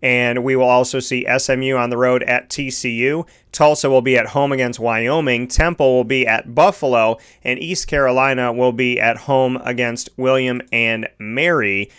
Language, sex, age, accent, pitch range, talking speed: English, male, 30-49, American, 125-135 Hz, 170 wpm